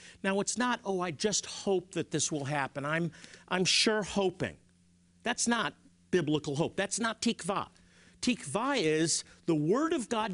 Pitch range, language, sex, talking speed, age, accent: 145-210 Hz, English, male, 165 wpm, 50-69, American